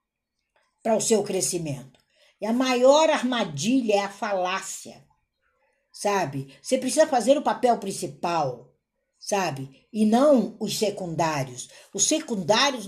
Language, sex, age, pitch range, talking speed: Portuguese, female, 60-79, 180-265 Hz, 115 wpm